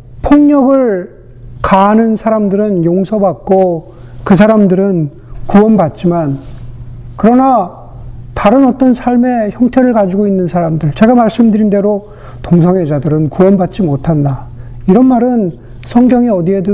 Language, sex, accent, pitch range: Korean, male, native, 125-215 Hz